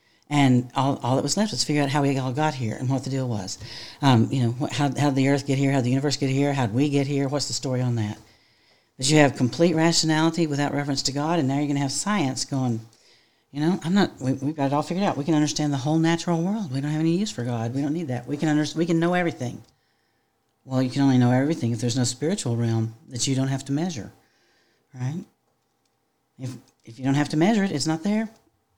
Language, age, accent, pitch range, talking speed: English, 50-69, American, 125-155 Hz, 265 wpm